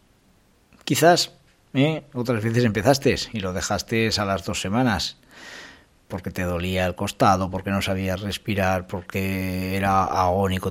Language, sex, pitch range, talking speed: Spanish, male, 90-115 Hz, 130 wpm